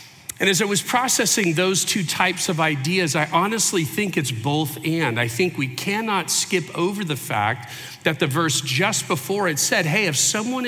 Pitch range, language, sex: 140-185 Hz, English, male